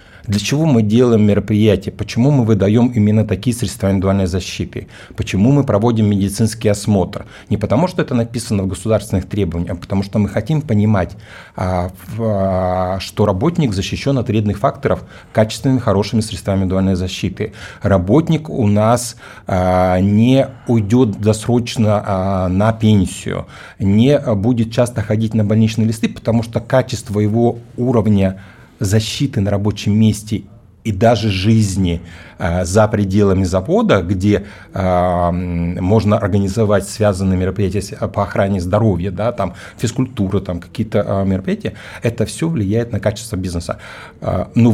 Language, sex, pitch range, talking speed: Russian, male, 95-115 Hz, 120 wpm